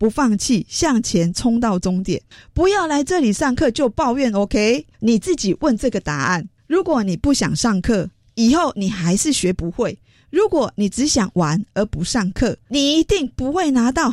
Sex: female